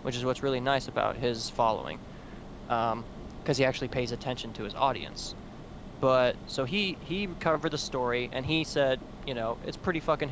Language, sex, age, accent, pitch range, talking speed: English, male, 20-39, American, 120-150 Hz, 185 wpm